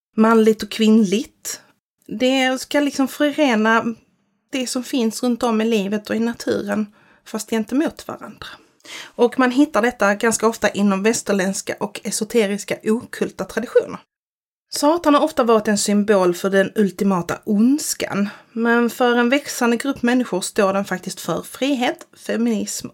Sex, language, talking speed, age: female, Swedish, 145 wpm, 30-49